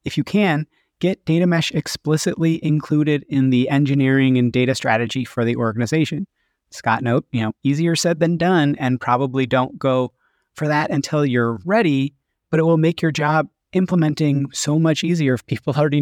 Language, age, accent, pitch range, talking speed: English, 30-49, American, 120-155 Hz, 175 wpm